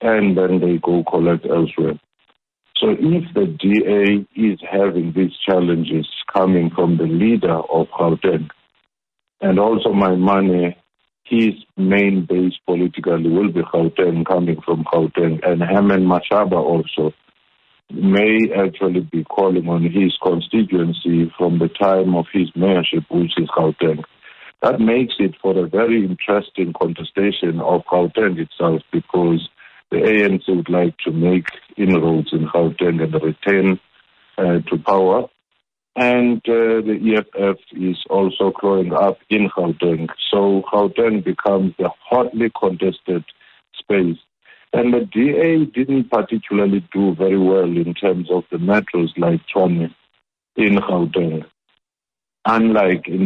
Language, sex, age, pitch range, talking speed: English, male, 50-69, 85-100 Hz, 130 wpm